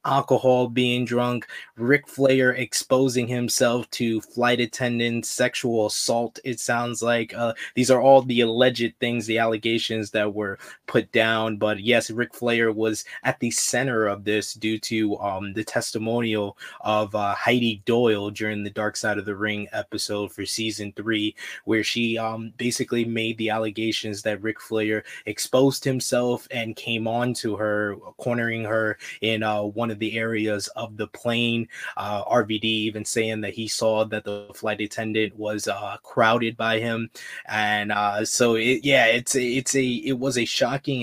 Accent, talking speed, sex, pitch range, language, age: American, 165 wpm, male, 110-120 Hz, English, 20-39